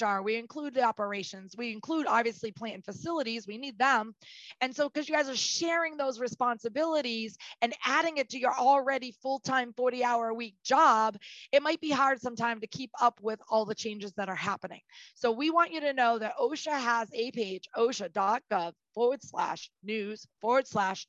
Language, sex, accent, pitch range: English, female, American, 215-260 Hz